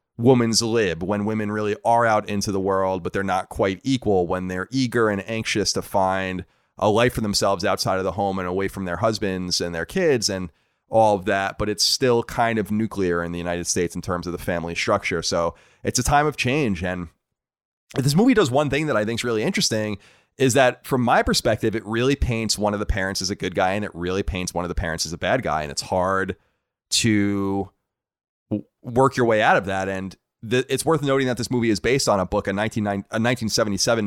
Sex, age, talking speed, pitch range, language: male, 30-49, 225 wpm, 95-115 Hz, English